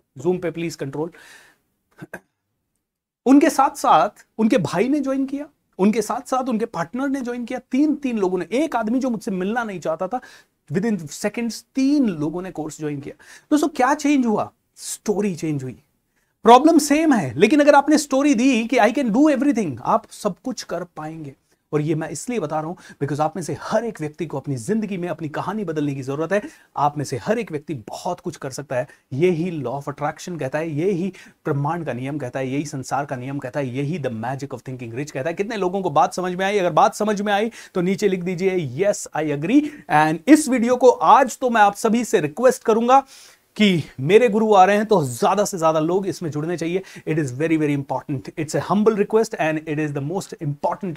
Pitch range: 150-220 Hz